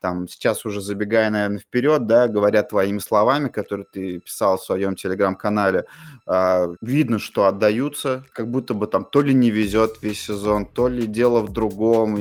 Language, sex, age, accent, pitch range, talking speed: Russian, male, 20-39, native, 105-125 Hz, 160 wpm